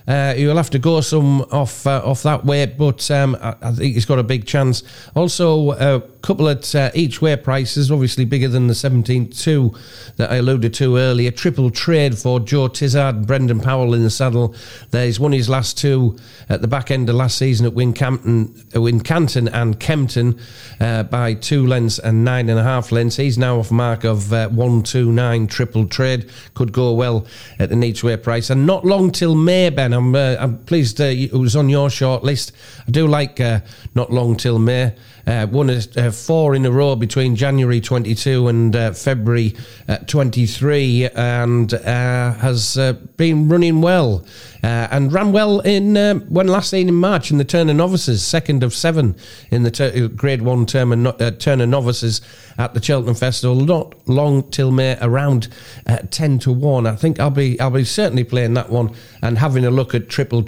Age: 40-59